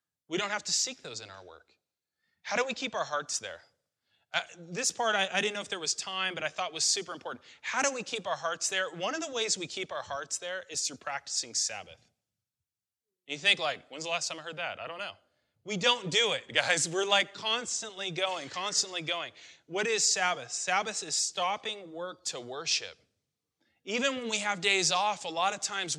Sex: male